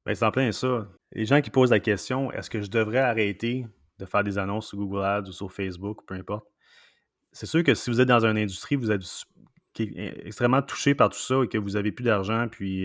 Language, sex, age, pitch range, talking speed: French, male, 30-49, 100-125 Hz, 245 wpm